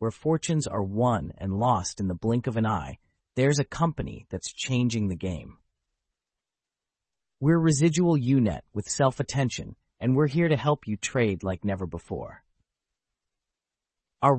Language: English